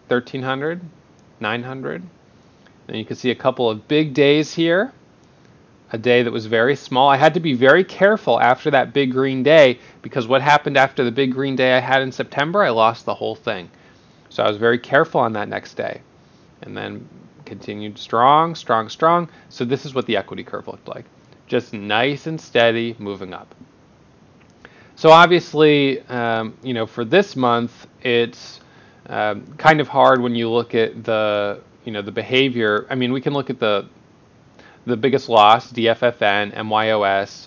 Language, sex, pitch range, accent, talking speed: English, male, 110-135 Hz, American, 175 wpm